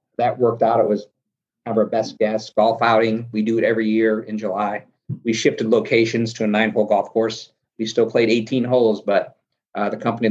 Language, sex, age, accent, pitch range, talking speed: English, male, 40-59, American, 105-120 Hz, 210 wpm